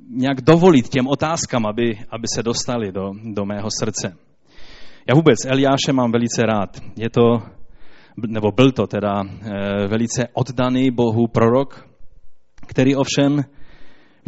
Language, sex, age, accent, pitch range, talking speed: Czech, male, 30-49, native, 120-155 Hz, 130 wpm